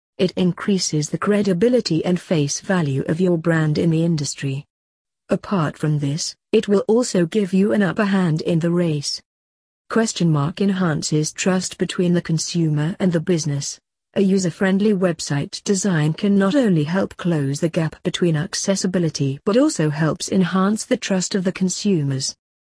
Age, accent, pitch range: 40-59, British, 155-195 Hz